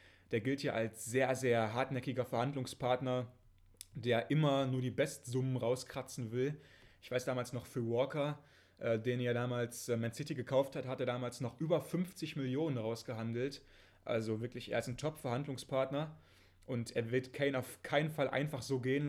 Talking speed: 165 wpm